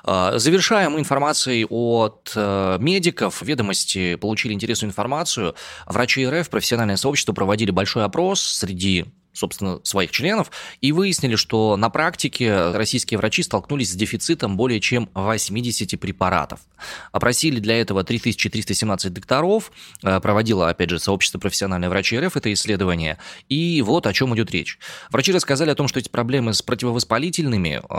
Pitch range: 95-125 Hz